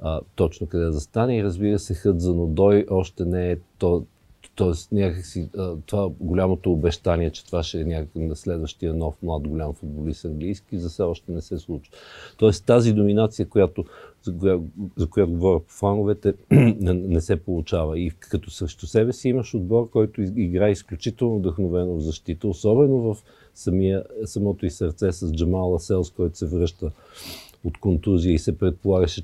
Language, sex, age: Bulgarian, male, 50-69